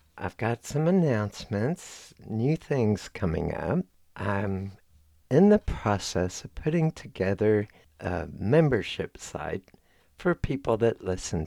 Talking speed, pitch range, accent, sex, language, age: 115 wpm, 90-120 Hz, American, male, English, 60-79